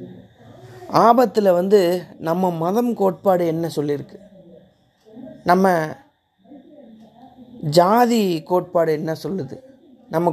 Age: 30-49